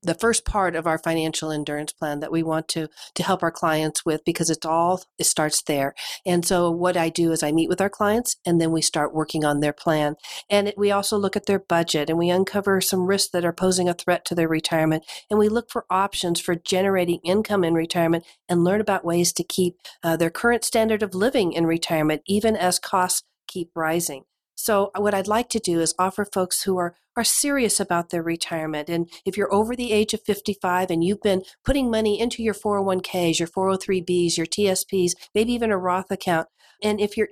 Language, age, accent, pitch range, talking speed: English, 50-69, American, 165-205 Hz, 220 wpm